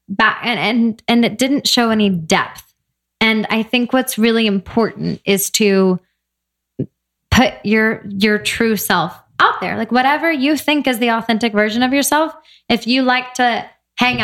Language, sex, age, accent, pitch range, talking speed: English, female, 10-29, American, 205-245 Hz, 165 wpm